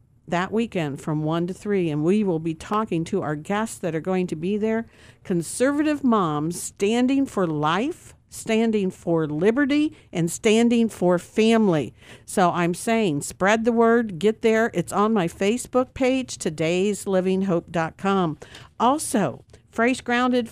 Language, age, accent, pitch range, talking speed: English, 50-69, American, 165-225 Hz, 145 wpm